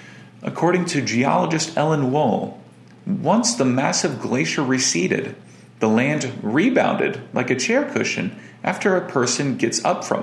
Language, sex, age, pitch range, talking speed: English, male, 40-59, 120-200 Hz, 135 wpm